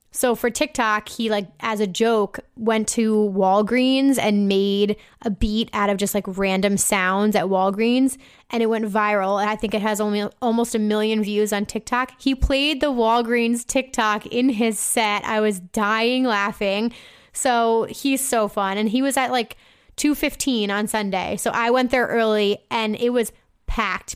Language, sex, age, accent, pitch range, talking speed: English, female, 10-29, American, 205-240 Hz, 180 wpm